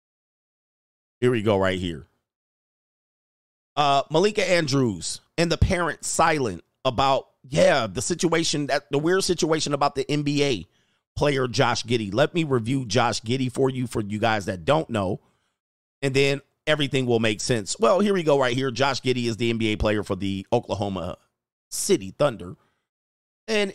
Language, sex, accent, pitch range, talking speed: English, male, American, 110-140 Hz, 160 wpm